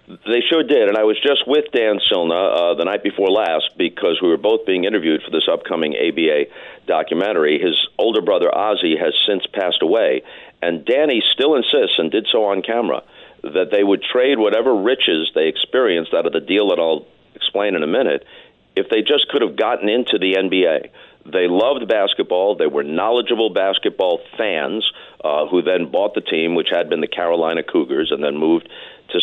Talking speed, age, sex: 195 wpm, 50-69, male